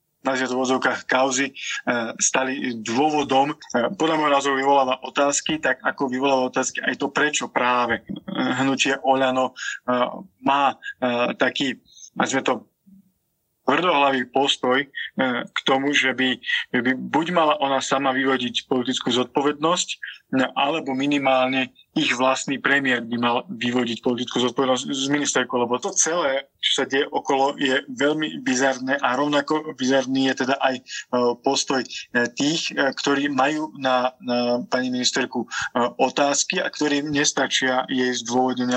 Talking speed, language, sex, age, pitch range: 125 wpm, Slovak, male, 20-39, 125-145 Hz